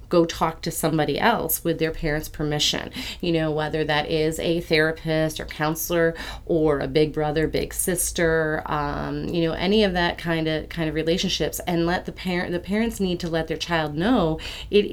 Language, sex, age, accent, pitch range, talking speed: English, female, 30-49, American, 155-175 Hz, 195 wpm